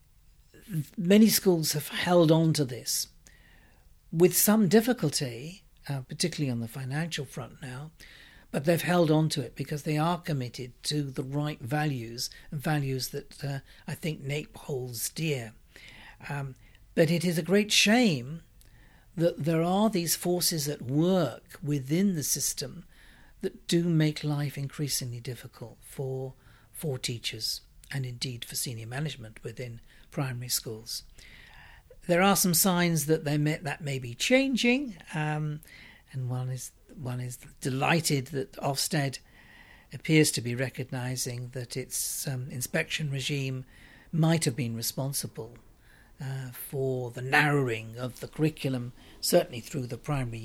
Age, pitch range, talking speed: 60-79, 125-160 Hz, 140 wpm